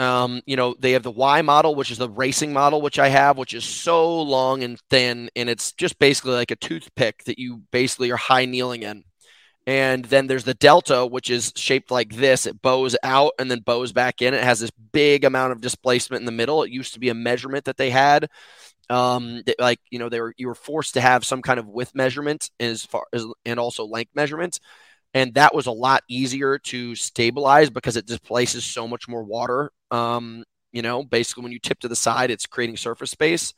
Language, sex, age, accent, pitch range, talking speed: English, male, 20-39, American, 120-135 Hz, 225 wpm